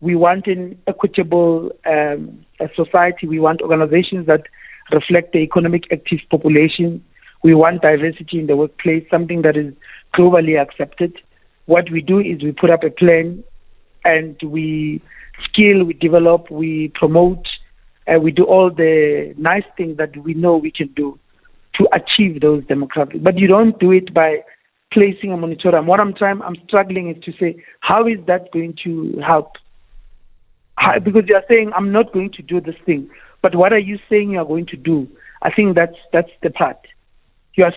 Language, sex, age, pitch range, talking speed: English, male, 50-69, 160-190 Hz, 175 wpm